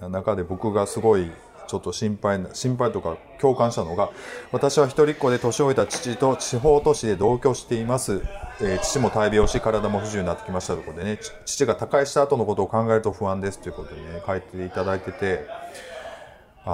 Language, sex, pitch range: Japanese, male, 95-140 Hz